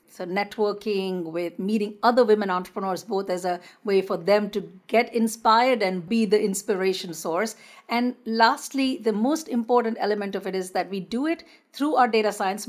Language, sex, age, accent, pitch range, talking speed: English, female, 50-69, Indian, 195-235 Hz, 180 wpm